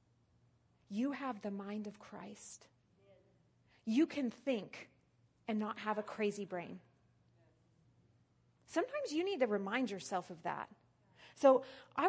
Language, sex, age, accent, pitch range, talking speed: English, female, 30-49, American, 195-265 Hz, 125 wpm